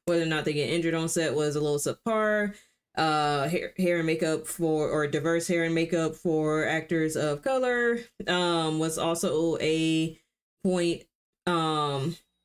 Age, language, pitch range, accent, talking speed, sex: 20-39, English, 155-185 Hz, American, 160 wpm, female